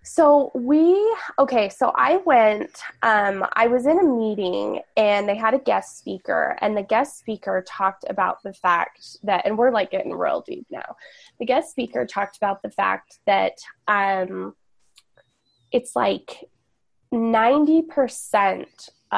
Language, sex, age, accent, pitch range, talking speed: English, female, 20-39, American, 195-255 Hz, 145 wpm